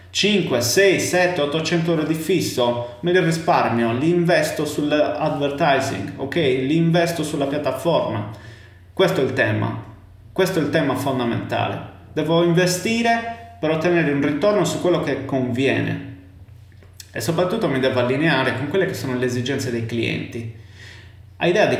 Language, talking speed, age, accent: Italian, 145 wpm, 30-49, native